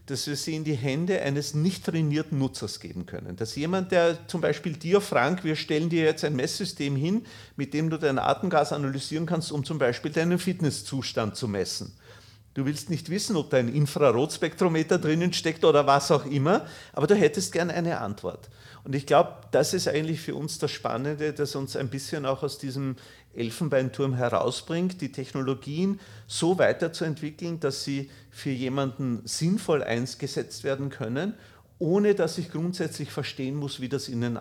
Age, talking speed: 40-59, 175 wpm